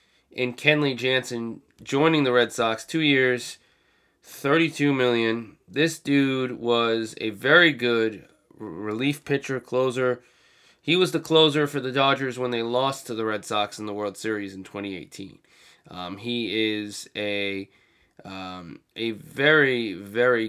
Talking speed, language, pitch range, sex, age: 145 wpm, English, 110-140 Hz, male, 20-39